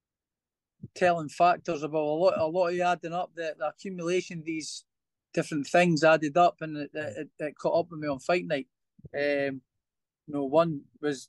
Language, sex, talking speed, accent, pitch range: English, male, 190 wpm, British, 145-165 Hz